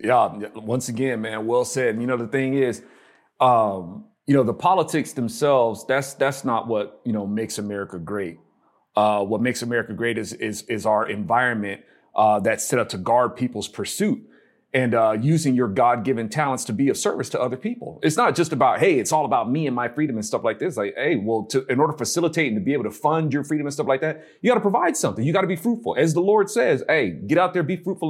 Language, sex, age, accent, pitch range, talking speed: English, male, 30-49, American, 125-195 Hz, 245 wpm